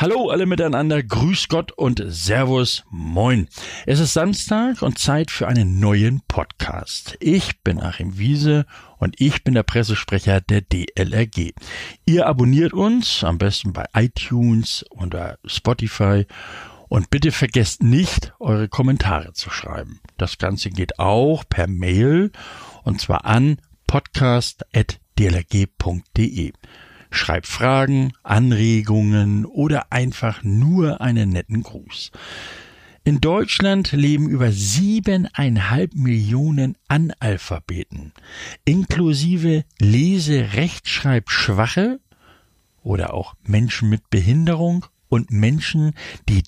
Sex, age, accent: male, 60-79, German